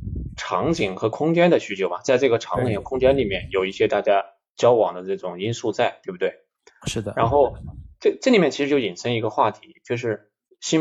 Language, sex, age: Chinese, male, 20-39